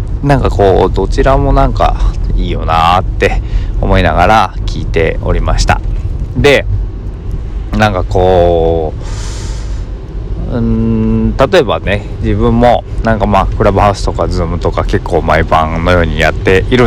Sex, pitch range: male, 85-105 Hz